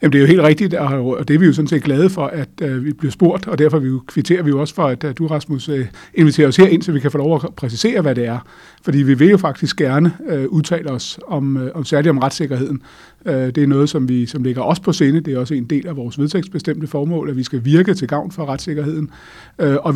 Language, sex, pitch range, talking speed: Danish, male, 135-160 Hz, 245 wpm